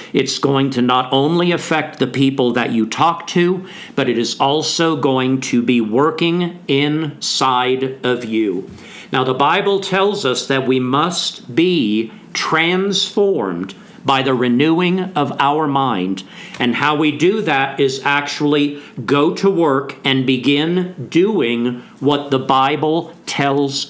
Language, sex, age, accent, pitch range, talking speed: English, male, 50-69, American, 130-160 Hz, 140 wpm